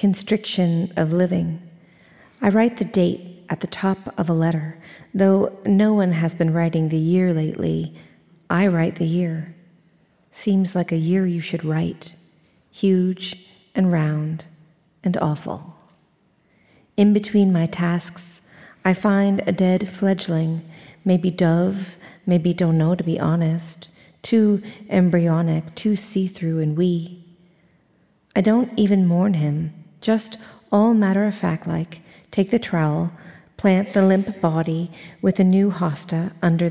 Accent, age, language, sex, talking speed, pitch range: American, 40-59, English, female, 135 wpm, 165-195 Hz